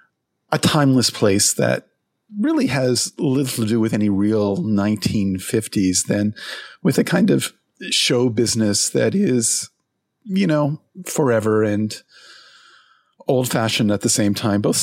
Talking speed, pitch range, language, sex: 135 wpm, 100-150 Hz, English, male